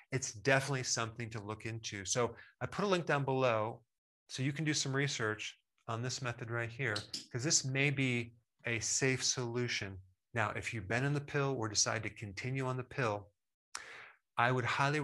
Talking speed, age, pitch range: 190 wpm, 30-49, 110-130 Hz